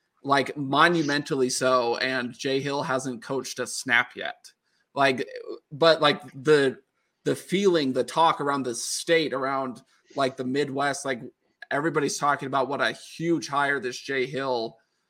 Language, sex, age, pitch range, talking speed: English, male, 20-39, 135-165 Hz, 145 wpm